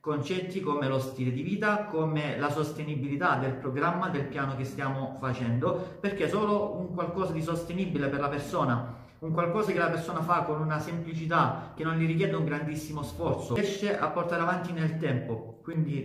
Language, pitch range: Italian, 135-175 Hz